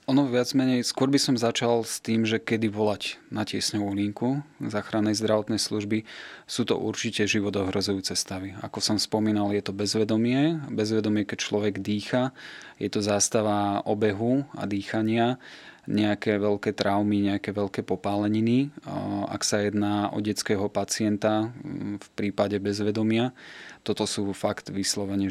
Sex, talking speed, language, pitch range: male, 140 wpm, Slovak, 100-110 Hz